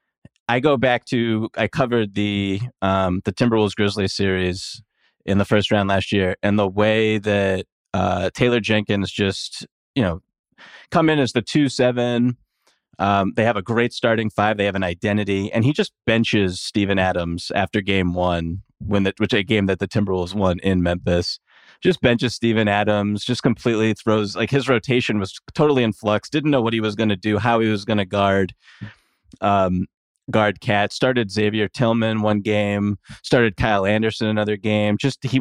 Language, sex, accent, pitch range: English, male, American, 100-120 Hz